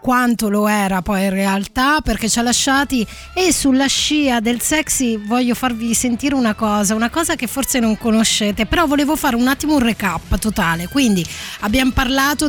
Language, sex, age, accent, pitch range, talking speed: Italian, female, 20-39, native, 205-260 Hz, 180 wpm